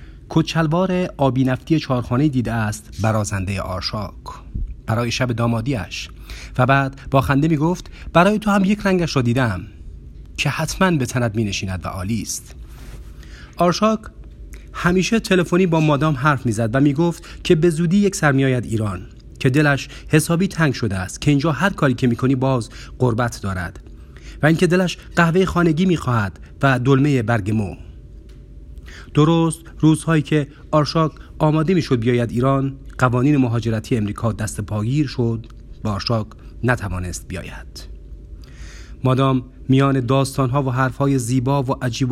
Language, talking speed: Persian, 145 wpm